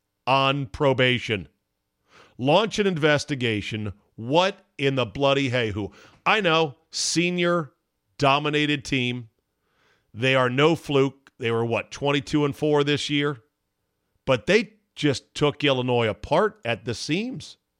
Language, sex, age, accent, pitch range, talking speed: English, male, 40-59, American, 110-150 Hz, 120 wpm